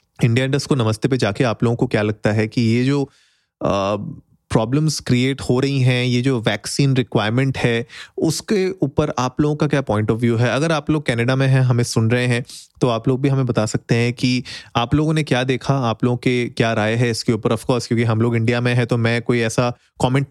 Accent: native